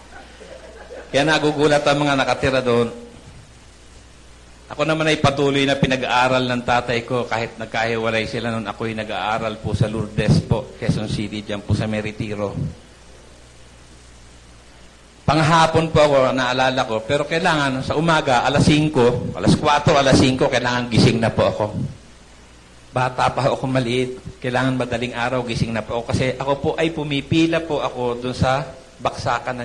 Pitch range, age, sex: 100-130 Hz, 50-69, male